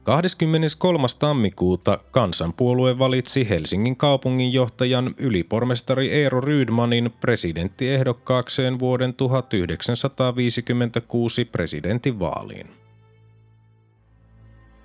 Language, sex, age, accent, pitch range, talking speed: Finnish, male, 30-49, native, 110-130 Hz, 55 wpm